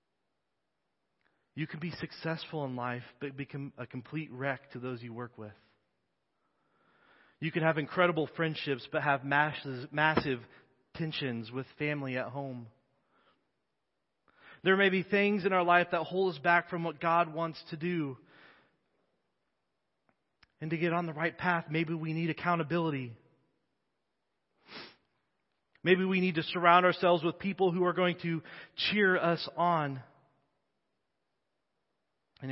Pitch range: 140-180 Hz